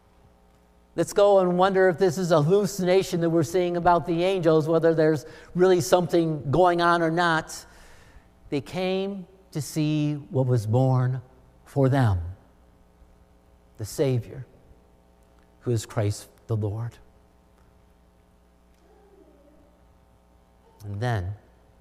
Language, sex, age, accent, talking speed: English, male, 50-69, American, 115 wpm